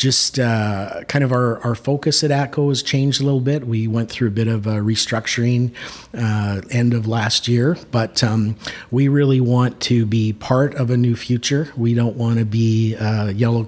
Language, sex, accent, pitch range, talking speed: English, male, American, 110-130 Hz, 200 wpm